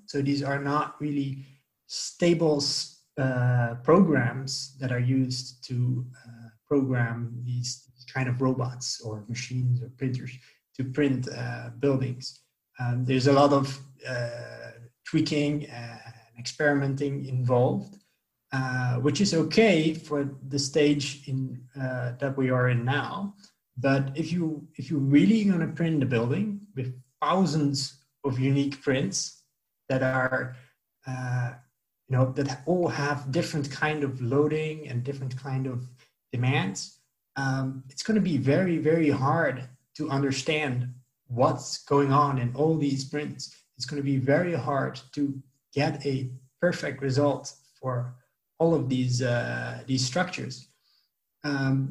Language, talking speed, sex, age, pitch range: English, 135 wpm, male, 30-49, 130-150 Hz